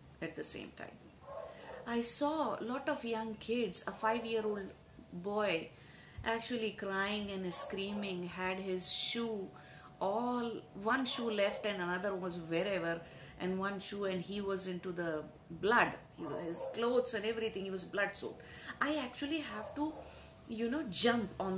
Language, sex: English, female